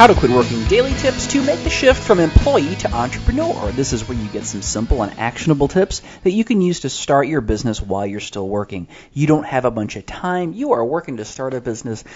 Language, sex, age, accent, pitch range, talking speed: English, male, 30-49, American, 110-150 Hz, 245 wpm